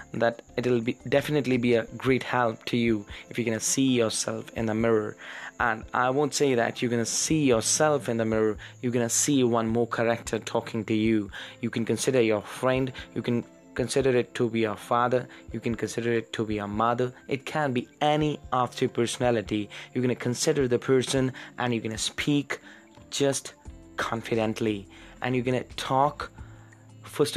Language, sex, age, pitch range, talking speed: English, male, 20-39, 110-125 Hz, 180 wpm